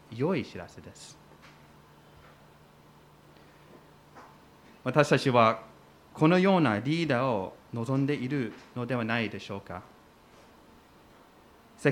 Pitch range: 115-165 Hz